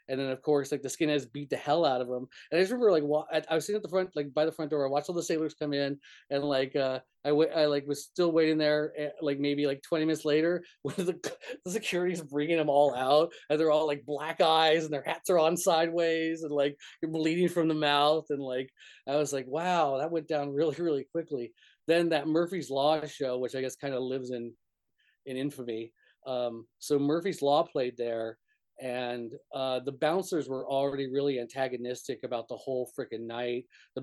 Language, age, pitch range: English, 30-49, 130-160 Hz